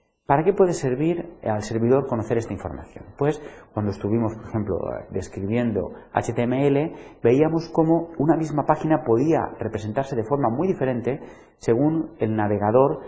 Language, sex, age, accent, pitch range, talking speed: Spanish, male, 40-59, Spanish, 110-155 Hz, 140 wpm